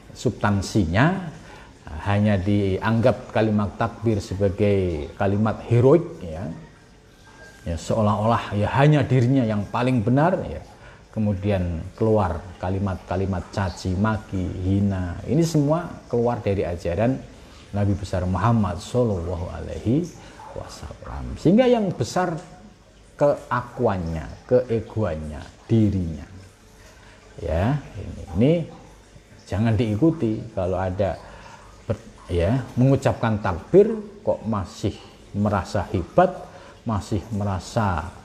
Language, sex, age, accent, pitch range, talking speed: Indonesian, male, 40-59, native, 95-120 Hz, 90 wpm